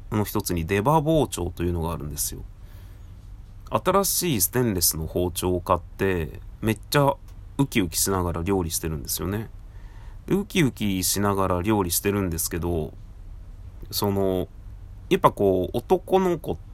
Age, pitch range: 30-49, 90-115 Hz